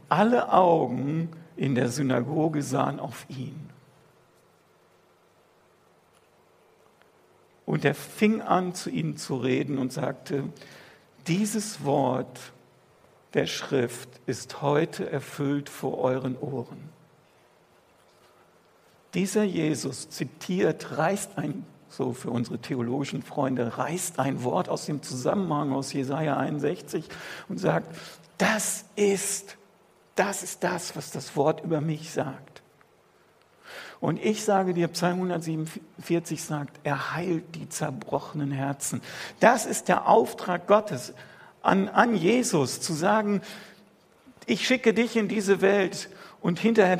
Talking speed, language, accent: 115 wpm, German, German